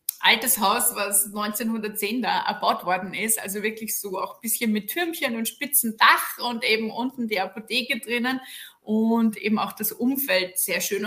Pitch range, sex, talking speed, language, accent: 200-250 Hz, female, 175 wpm, German, German